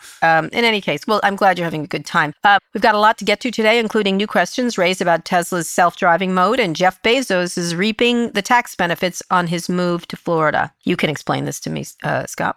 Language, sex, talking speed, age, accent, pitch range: English, female, 240 wpm, 40-59, American, 160-205 Hz